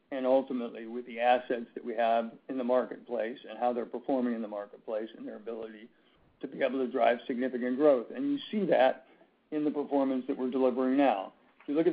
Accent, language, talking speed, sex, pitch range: American, English, 215 wpm, male, 125-145 Hz